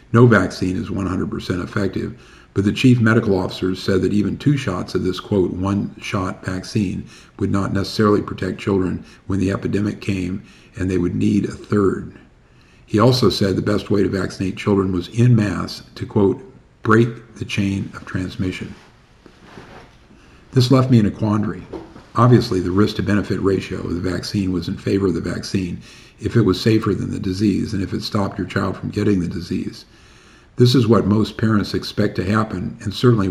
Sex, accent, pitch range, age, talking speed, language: male, American, 95-115 Hz, 50-69, 180 wpm, English